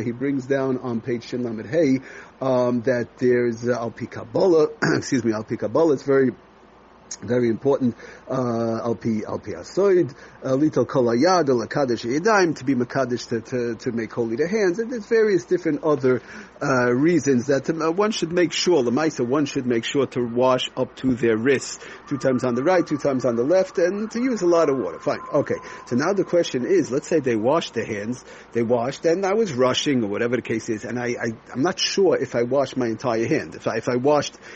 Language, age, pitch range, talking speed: English, 40-59, 120-150 Hz, 205 wpm